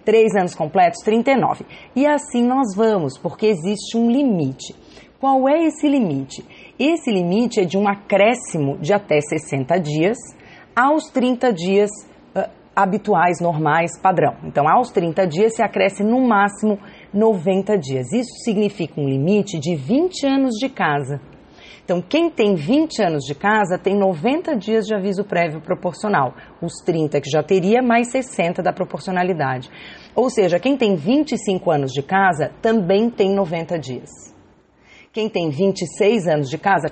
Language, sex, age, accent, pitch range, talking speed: Portuguese, female, 30-49, Brazilian, 155-215 Hz, 150 wpm